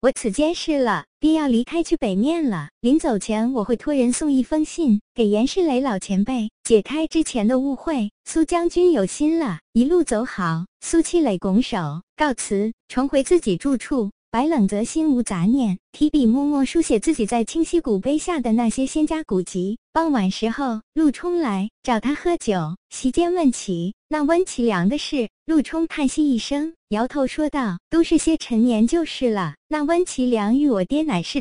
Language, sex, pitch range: Chinese, male, 220-310 Hz